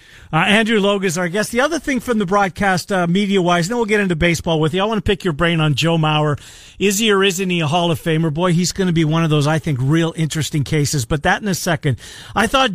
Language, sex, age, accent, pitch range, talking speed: English, male, 40-59, American, 165-210 Hz, 280 wpm